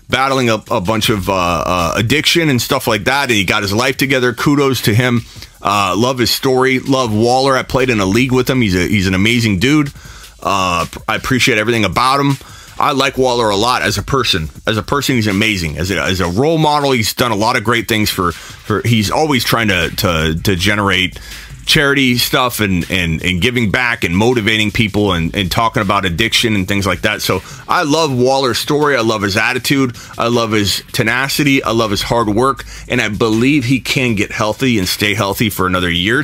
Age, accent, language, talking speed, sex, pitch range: 30-49, American, English, 215 wpm, male, 105-145 Hz